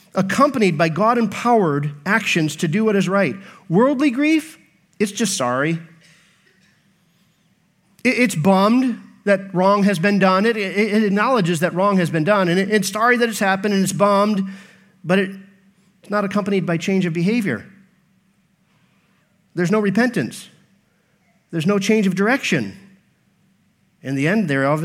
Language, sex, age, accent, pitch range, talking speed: English, male, 40-59, American, 180-220 Hz, 140 wpm